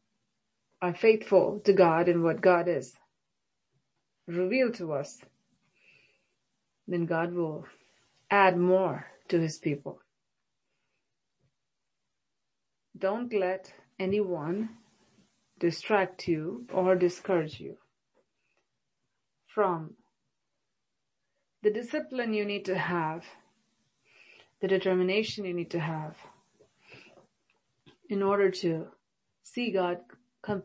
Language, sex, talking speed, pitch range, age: English, female, 90 wpm, 170-205 Hz, 30-49